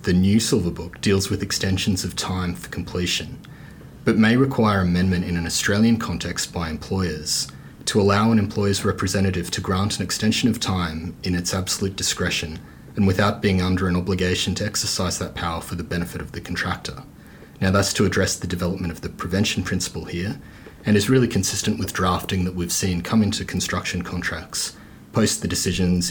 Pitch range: 90-105 Hz